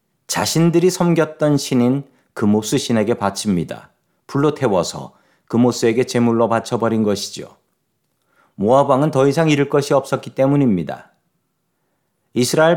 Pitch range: 115-150 Hz